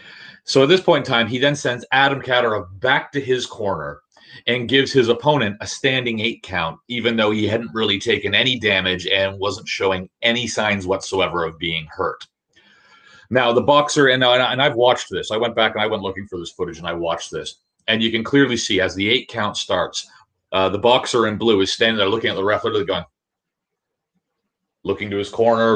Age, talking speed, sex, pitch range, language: 30-49, 205 wpm, male, 100-130 Hz, English